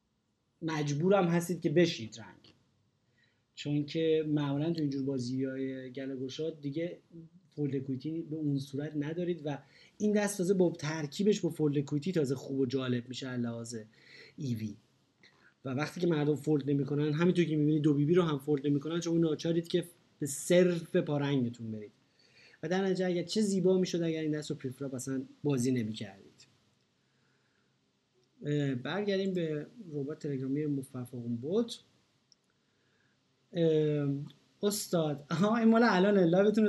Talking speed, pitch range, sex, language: 135 wpm, 140-185 Hz, male, Persian